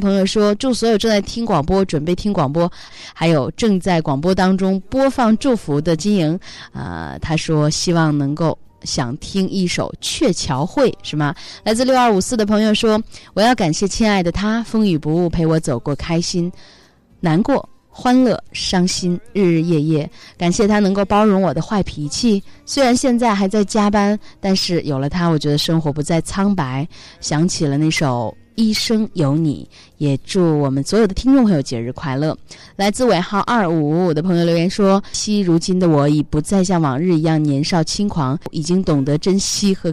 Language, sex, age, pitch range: Chinese, female, 20-39, 150-205 Hz